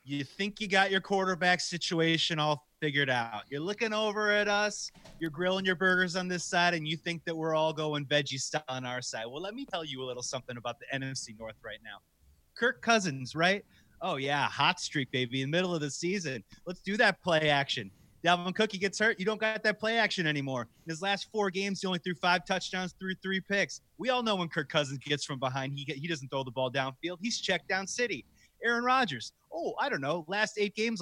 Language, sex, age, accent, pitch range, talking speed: English, male, 30-49, American, 140-195 Hz, 230 wpm